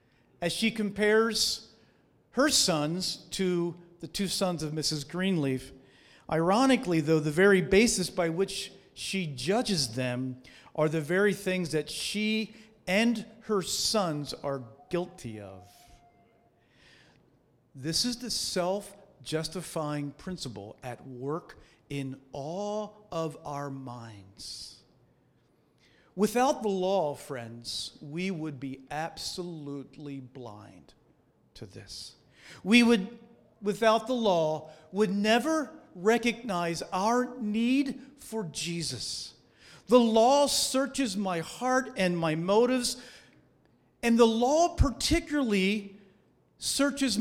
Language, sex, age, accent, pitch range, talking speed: English, male, 50-69, American, 150-225 Hz, 105 wpm